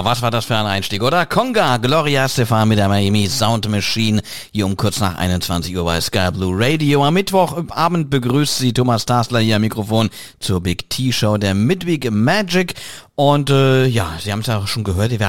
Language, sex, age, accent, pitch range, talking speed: English, male, 40-59, German, 110-140 Hz, 205 wpm